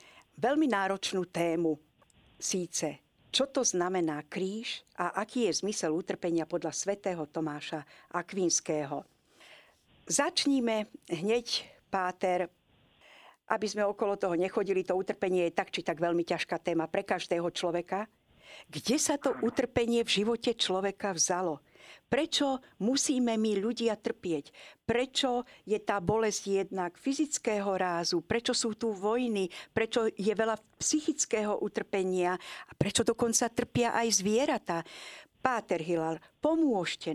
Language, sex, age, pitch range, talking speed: Slovak, female, 50-69, 175-235 Hz, 120 wpm